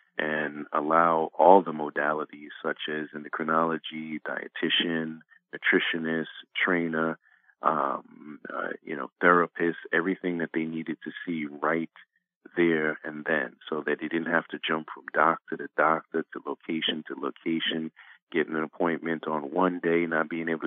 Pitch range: 75-85 Hz